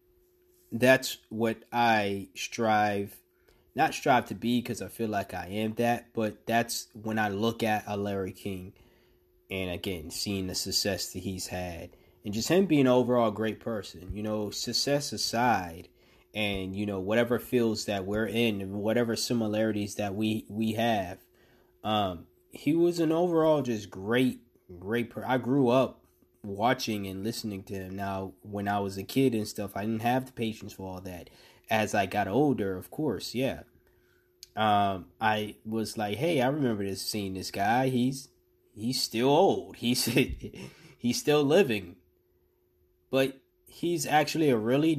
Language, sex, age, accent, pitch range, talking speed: English, male, 20-39, American, 95-125 Hz, 165 wpm